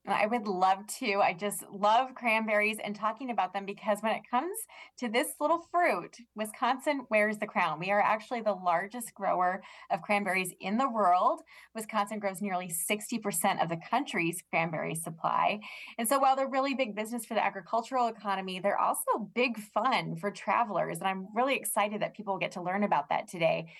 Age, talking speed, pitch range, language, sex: 20-39, 185 wpm, 190-235 Hz, English, female